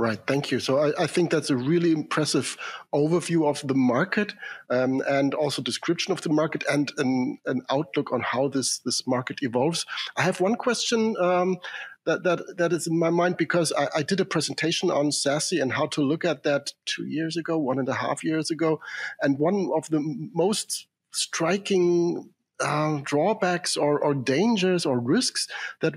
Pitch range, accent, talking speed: 135-170 Hz, German, 185 wpm